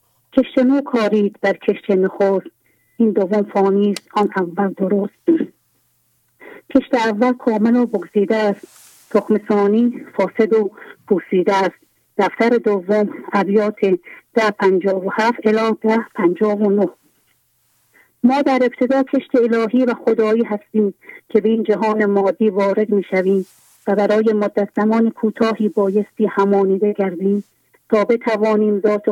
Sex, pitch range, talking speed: female, 195-225 Hz, 115 wpm